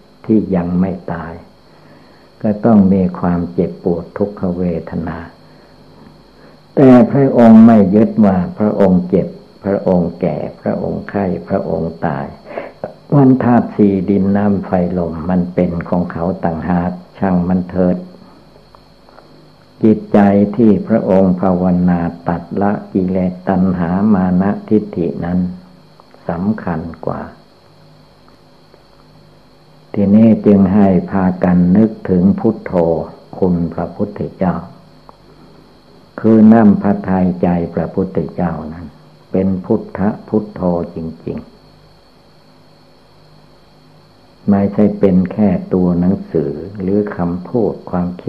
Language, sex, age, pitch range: Thai, male, 60-79, 85-105 Hz